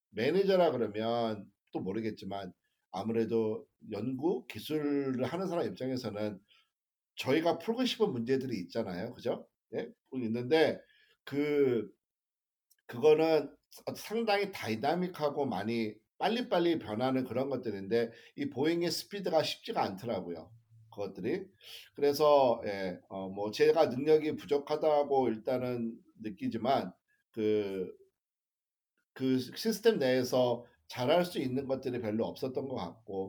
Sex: male